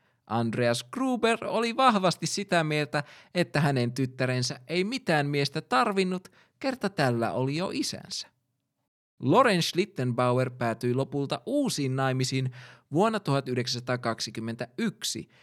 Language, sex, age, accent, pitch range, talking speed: Finnish, male, 20-39, native, 125-185 Hz, 100 wpm